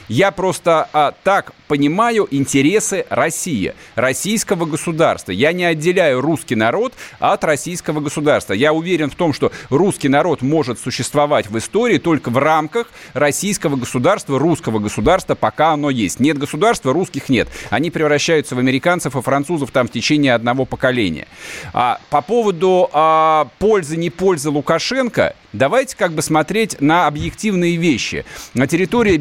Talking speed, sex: 145 wpm, male